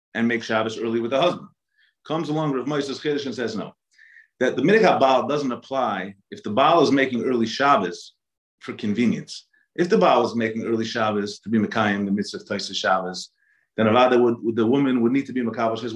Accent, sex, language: American, male, English